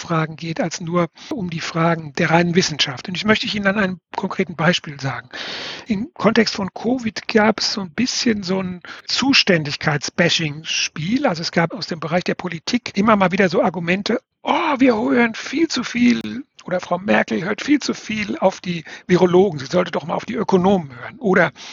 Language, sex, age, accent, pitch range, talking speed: German, male, 60-79, German, 170-220 Hz, 195 wpm